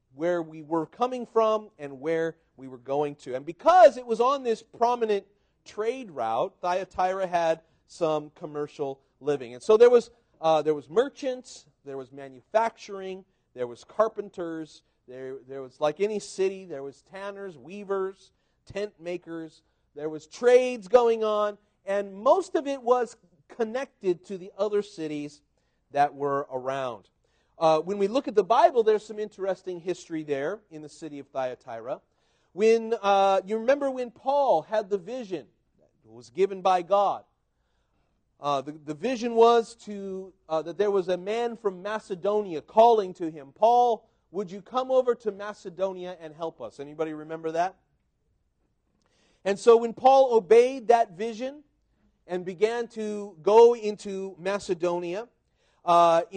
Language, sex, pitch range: English, male, 160-225 Hz